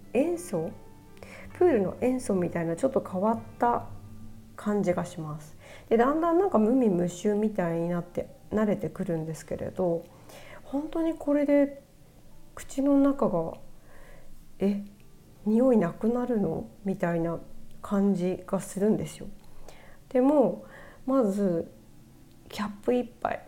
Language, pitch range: Japanese, 175-250 Hz